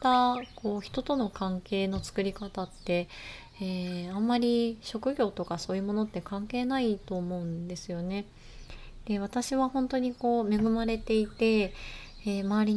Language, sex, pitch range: Japanese, female, 185-225 Hz